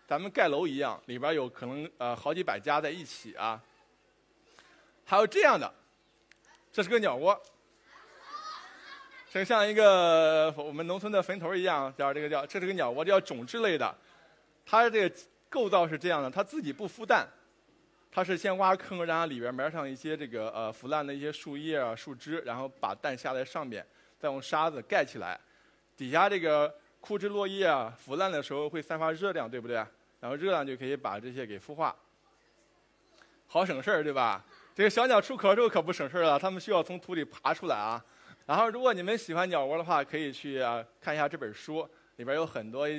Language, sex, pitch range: Chinese, male, 145-195 Hz